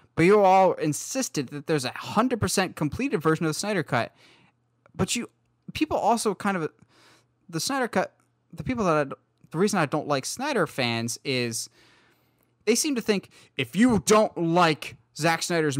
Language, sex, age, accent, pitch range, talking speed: English, male, 10-29, American, 130-205 Hz, 170 wpm